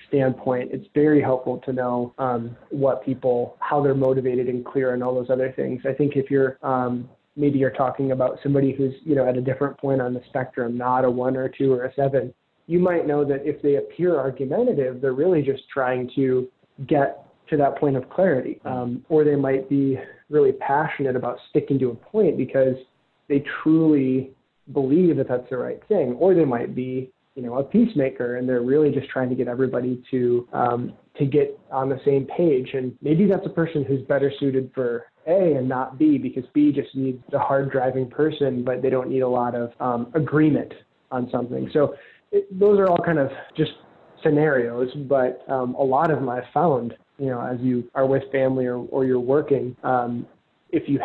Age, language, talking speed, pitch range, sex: 20-39, English, 205 wpm, 125-145 Hz, male